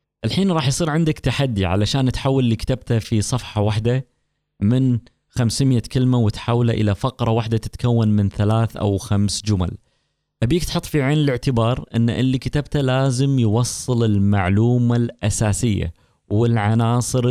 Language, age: Arabic, 20-39